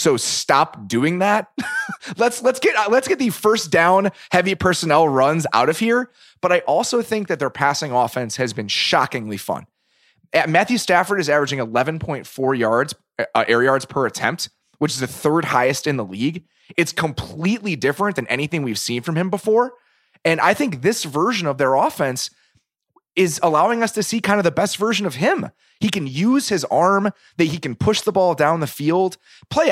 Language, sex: English, male